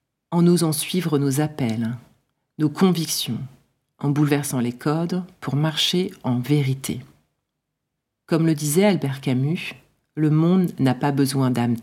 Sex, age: female, 40-59